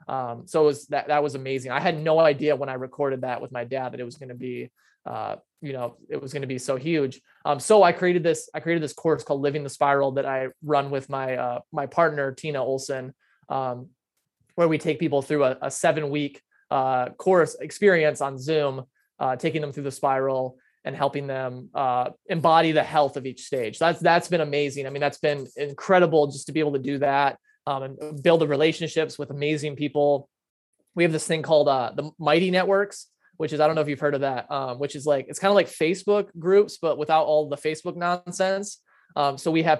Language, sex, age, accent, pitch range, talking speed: English, male, 20-39, American, 135-160 Hz, 230 wpm